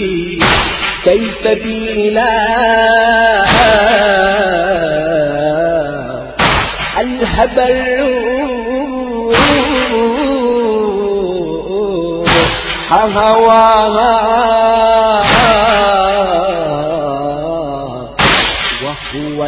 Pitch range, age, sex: 150-230 Hz, 40-59, male